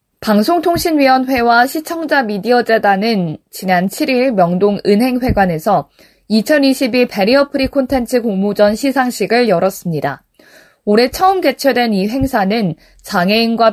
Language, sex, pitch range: Korean, female, 195-255 Hz